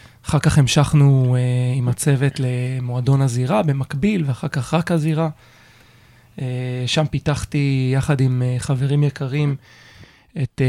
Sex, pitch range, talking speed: male, 130-150 Hz, 105 wpm